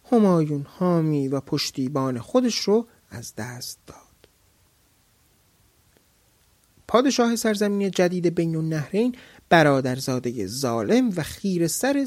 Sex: male